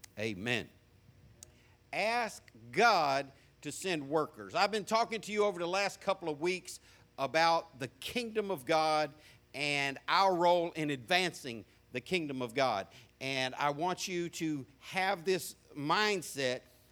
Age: 50-69